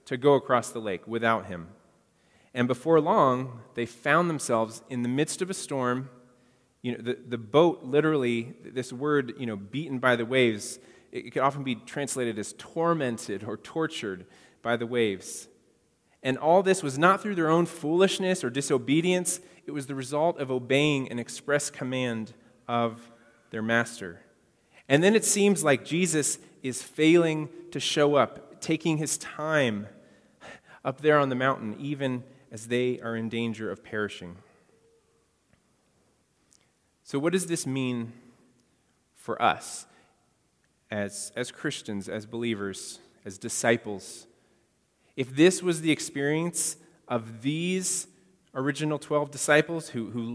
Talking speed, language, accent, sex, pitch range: 145 wpm, English, American, male, 115-155 Hz